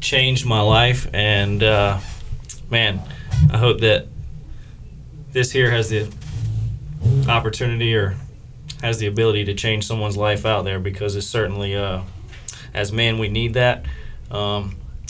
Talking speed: 135 wpm